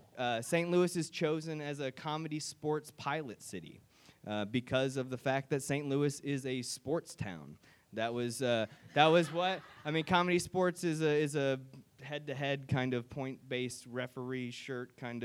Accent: American